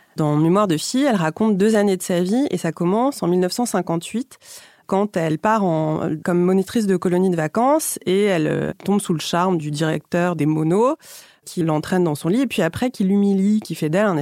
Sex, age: female, 30-49